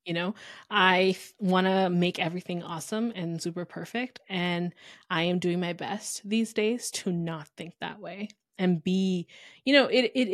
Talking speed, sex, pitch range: 175 wpm, female, 175-215 Hz